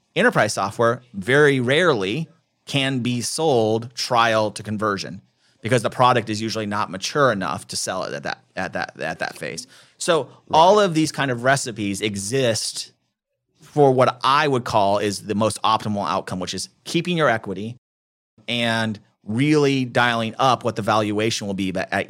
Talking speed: 165 wpm